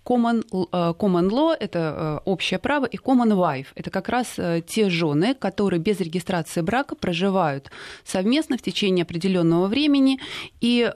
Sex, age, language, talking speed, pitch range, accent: female, 20-39, Russian, 135 wpm, 175-230 Hz, native